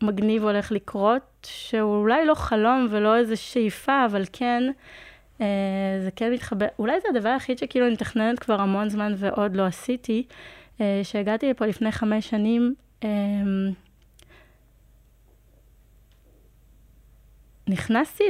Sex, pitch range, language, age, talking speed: female, 200-235 Hz, Hebrew, 30-49, 120 wpm